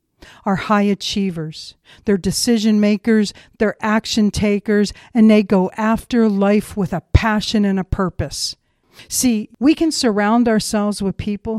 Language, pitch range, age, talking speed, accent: English, 175-215 Hz, 50-69, 140 wpm, American